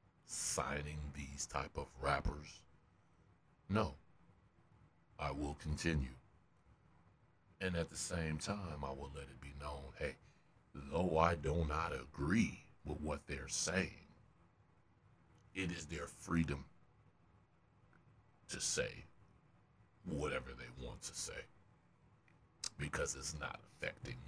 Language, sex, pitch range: English, male, 70-85 Hz